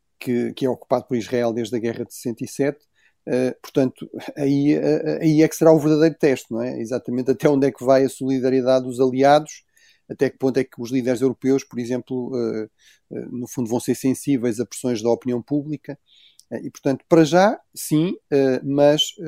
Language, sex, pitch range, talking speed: Portuguese, male, 130-150 Hz, 180 wpm